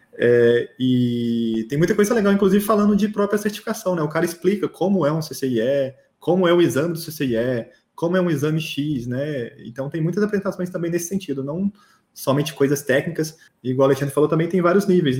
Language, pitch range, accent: Portuguese, 130-175 Hz, Brazilian